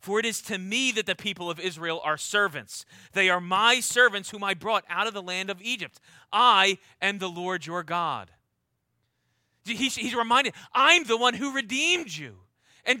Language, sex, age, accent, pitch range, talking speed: English, male, 30-49, American, 185-275 Hz, 185 wpm